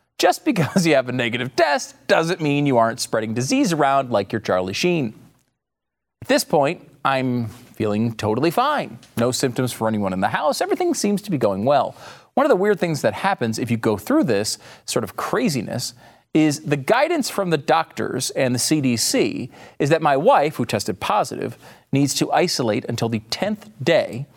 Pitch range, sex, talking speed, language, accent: 115-190 Hz, male, 185 wpm, English, American